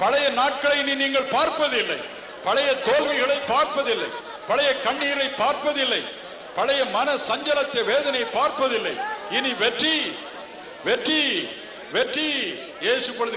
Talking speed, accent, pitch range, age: 45 wpm, native, 225-295 Hz, 50-69